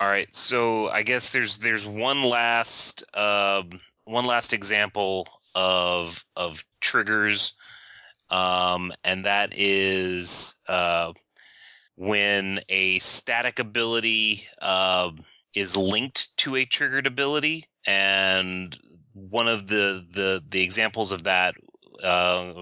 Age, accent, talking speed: 30-49, American, 110 wpm